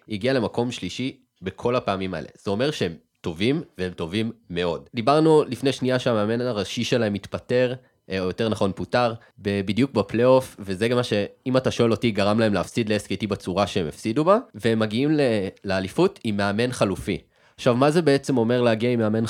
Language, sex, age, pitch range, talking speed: Hebrew, male, 20-39, 110-140 Hz, 175 wpm